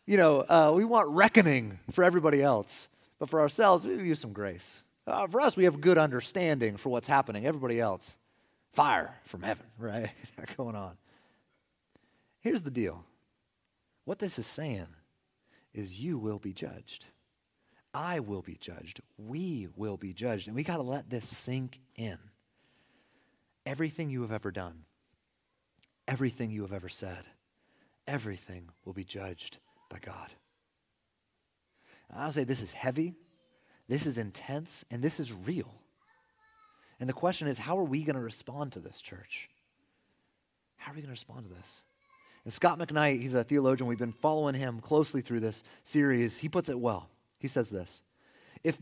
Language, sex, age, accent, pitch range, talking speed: English, male, 30-49, American, 105-155 Hz, 165 wpm